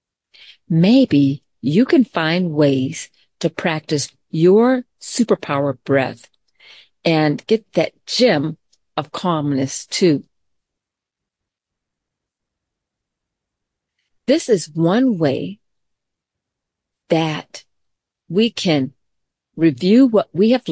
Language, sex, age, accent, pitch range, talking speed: English, female, 50-69, American, 140-225 Hz, 80 wpm